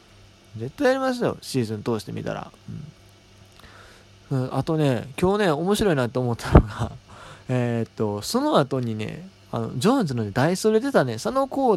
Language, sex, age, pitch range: Japanese, male, 20-39, 120-195 Hz